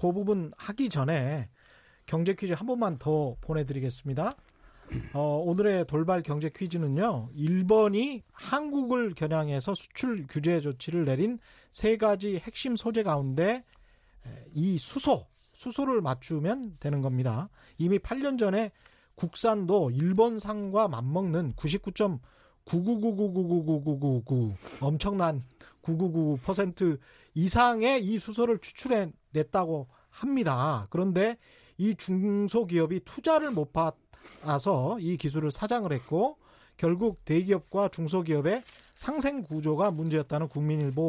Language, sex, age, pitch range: Korean, male, 40-59, 155-220 Hz